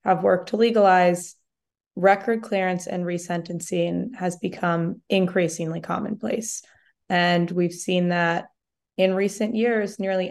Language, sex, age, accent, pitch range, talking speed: English, female, 20-39, American, 175-200 Hz, 115 wpm